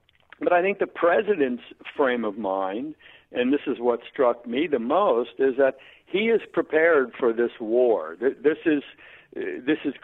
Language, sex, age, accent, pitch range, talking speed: English, male, 60-79, American, 130-160 Hz, 165 wpm